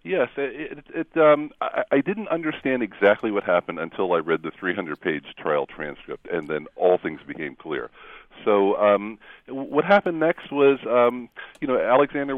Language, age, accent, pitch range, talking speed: English, 40-59, American, 85-130 Hz, 170 wpm